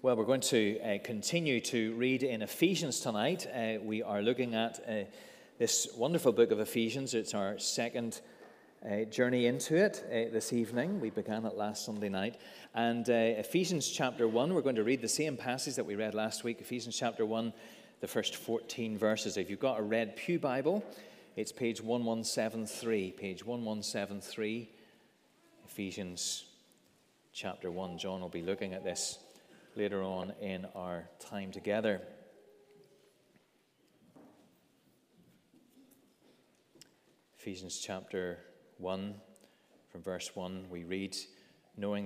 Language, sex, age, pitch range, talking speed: English, male, 30-49, 100-130 Hz, 140 wpm